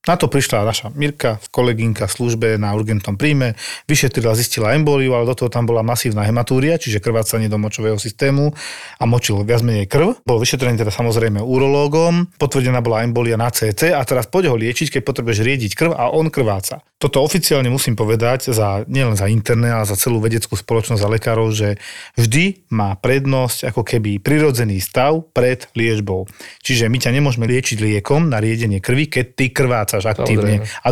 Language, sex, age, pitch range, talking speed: Slovak, male, 40-59, 115-140 Hz, 175 wpm